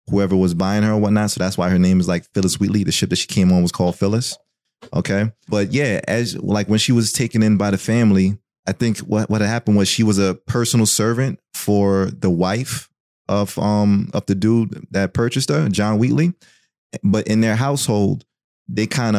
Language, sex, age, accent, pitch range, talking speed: English, male, 30-49, American, 90-105 Hz, 215 wpm